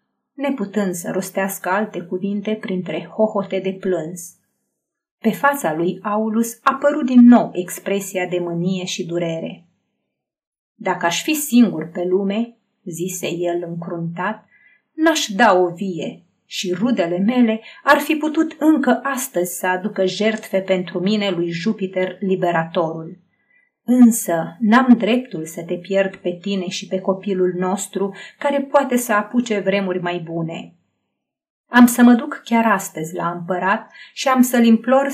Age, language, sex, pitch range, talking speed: 30-49, Romanian, female, 180-245 Hz, 140 wpm